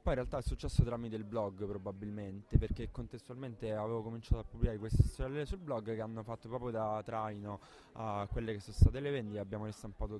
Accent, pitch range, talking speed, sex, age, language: native, 95-110 Hz, 200 wpm, male, 20-39, Italian